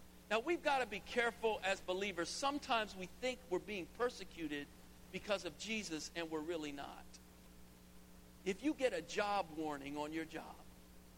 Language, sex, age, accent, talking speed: English, male, 50-69, American, 160 wpm